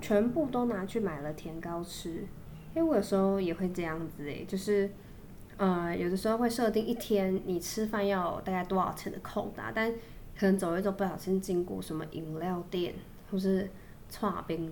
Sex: female